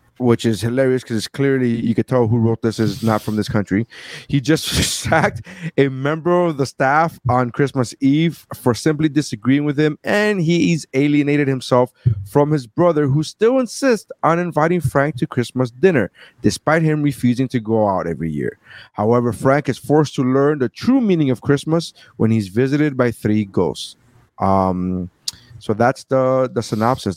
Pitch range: 115-150 Hz